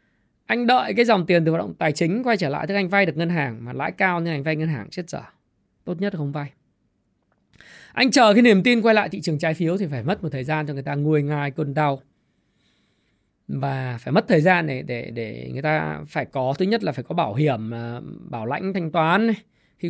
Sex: male